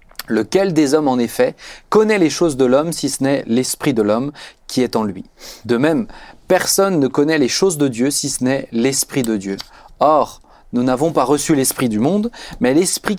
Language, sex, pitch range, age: French, male, 125-165 Hz, 30-49